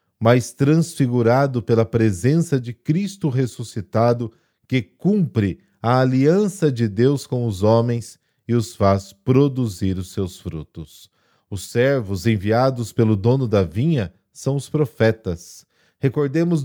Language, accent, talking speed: Portuguese, Brazilian, 125 wpm